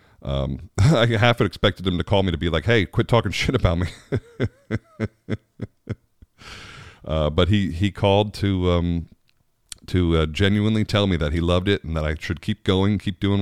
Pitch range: 80-100 Hz